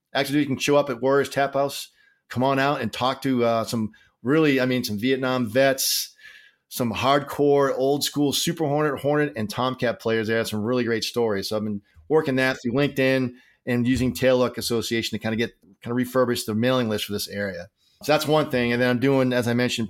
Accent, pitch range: American, 115-140 Hz